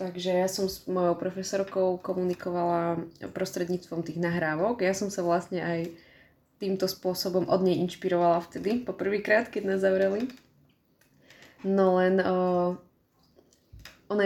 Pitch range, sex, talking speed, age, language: 175-205 Hz, female, 120 wpm, 20-39, Slovak